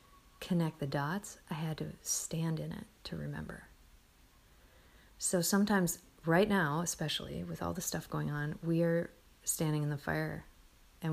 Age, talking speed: 30-49, 155 wpm